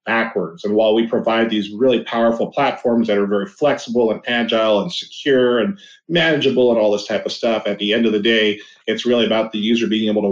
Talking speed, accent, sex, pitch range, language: 225 wpm, American, male, 110-120 Hz, English